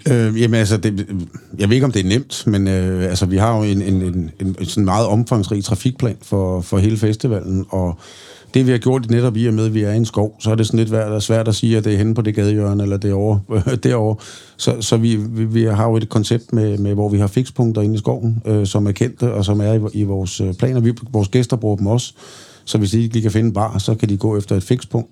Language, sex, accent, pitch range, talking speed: Danish, male, native, 105-115 Hz, 265 wpm